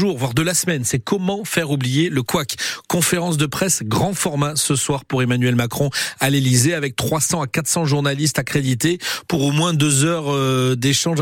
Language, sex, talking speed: French, male, 180 wpm